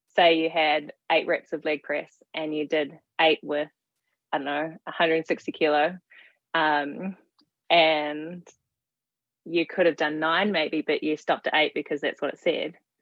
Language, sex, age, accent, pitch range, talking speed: English, female, 20-39, Australian, 150-170 Hz, 165 wpm